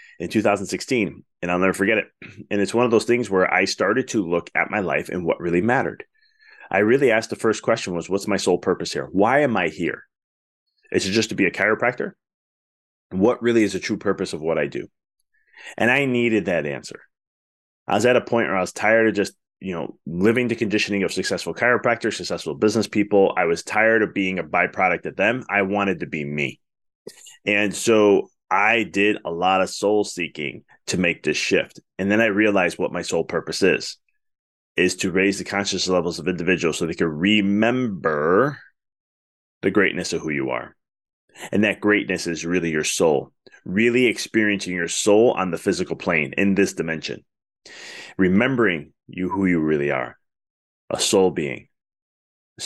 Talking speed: 190 wpm